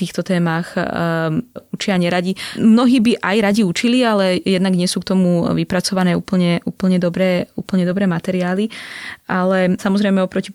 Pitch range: 175-205 Hz